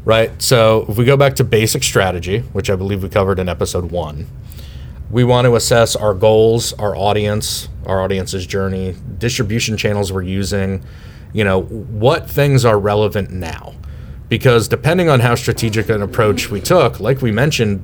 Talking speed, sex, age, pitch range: 170 wpm, male, 30-49, 95-120 Hz